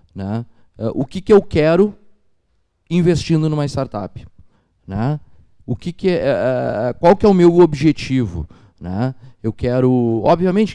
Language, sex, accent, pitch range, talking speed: Portuguese, male, Brazilian, 115-155 Hz, 110 wpm